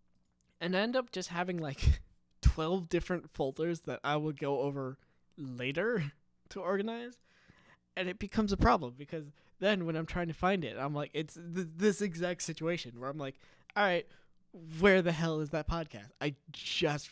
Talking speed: 175 wpm